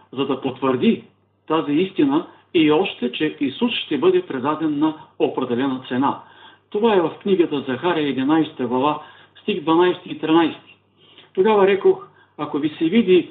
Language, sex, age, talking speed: Bulgarian, male, 50-69, 145 wpm